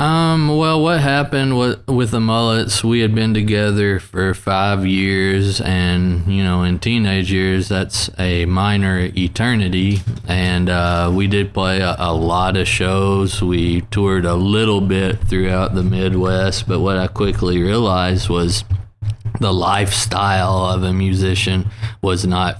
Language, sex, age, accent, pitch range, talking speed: German, male, 20-39, American, 90-105 Hz, 150 wpm